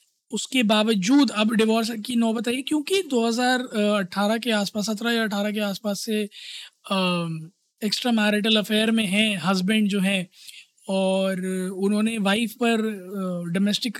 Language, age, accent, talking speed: Hindi, 20-39, native, 130 wpm